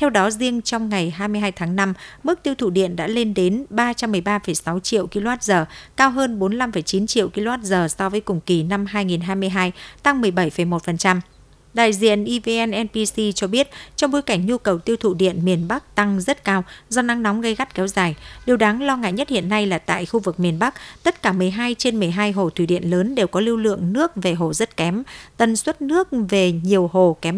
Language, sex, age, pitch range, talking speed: Vietnamese, female, 60-79, 185-230 Hz, 210 wpm